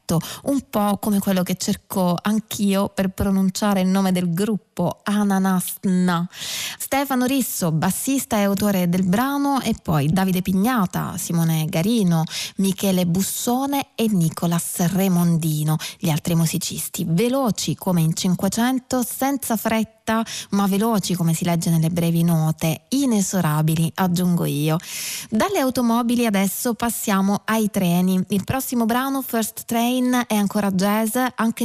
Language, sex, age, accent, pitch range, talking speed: Italian, female, 20-39, native, 175-220 Hz, 125 wpm